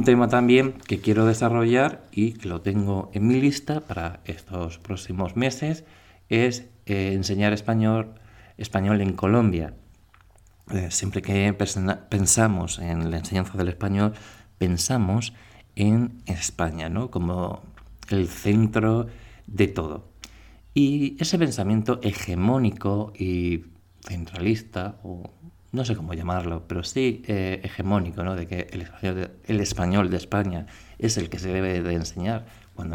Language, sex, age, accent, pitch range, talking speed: Spanish, male, 50-69, Spanish, 90-110 Hz, 135 wpm